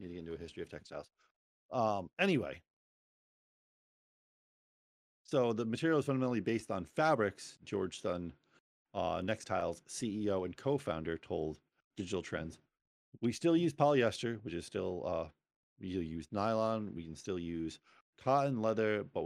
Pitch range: 90-120 Hz